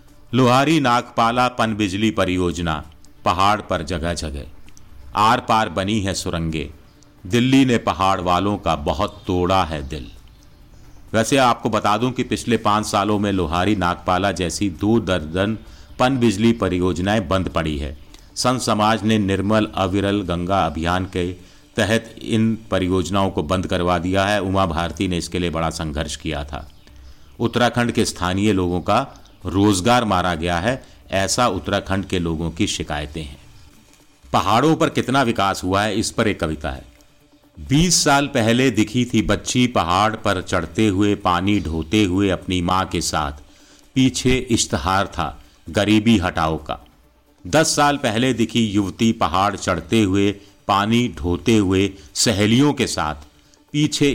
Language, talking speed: Hindi, 145 wpm